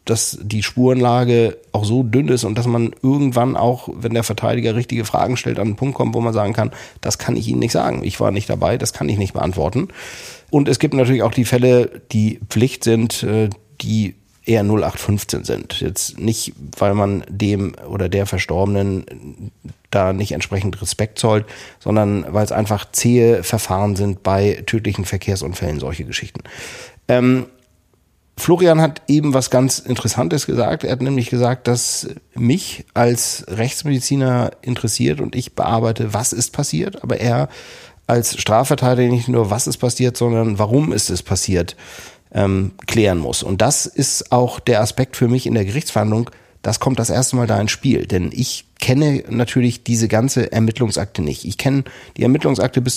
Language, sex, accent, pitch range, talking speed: German, male, German, 105-125 Hz, 170 wpm